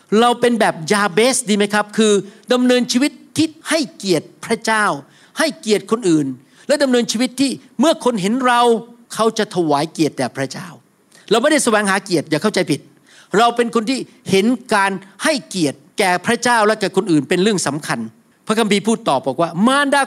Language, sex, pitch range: Thai, male, 195-265 Hz